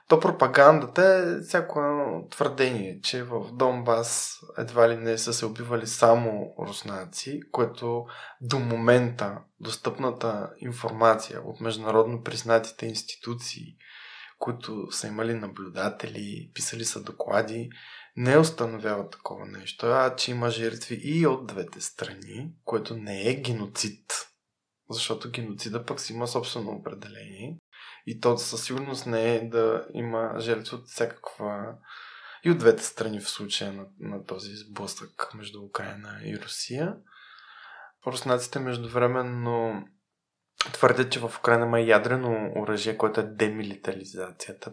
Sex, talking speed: male, 125 wpm